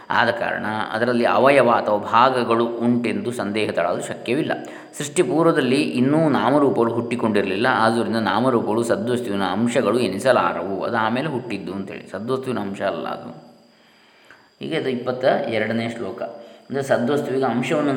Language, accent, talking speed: Kannada, native, 110 wpm